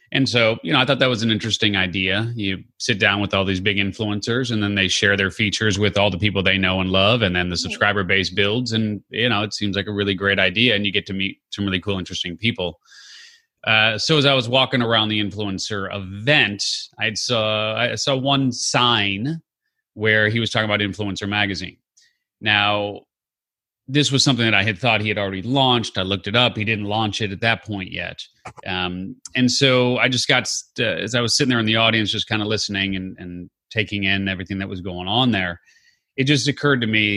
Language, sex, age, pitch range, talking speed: English, male, 30-49, 100-120 Hz, 225 wpm